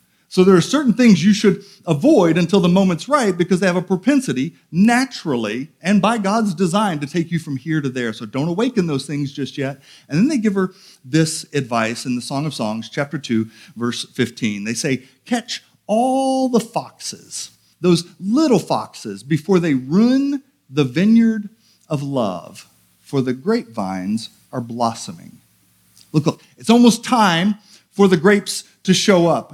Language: English